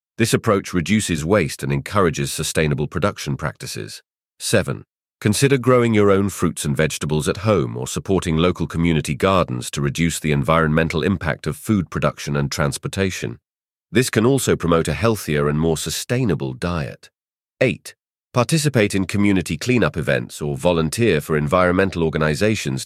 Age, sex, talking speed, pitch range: 40-59, male, 145 wpm, 75-110 Hz